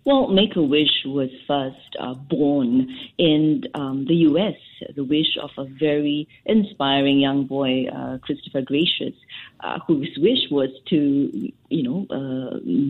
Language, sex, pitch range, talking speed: English, female, 140-180 Hz, 135 wpm